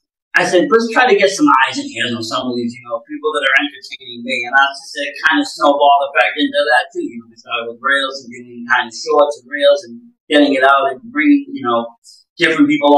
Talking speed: 250 wpm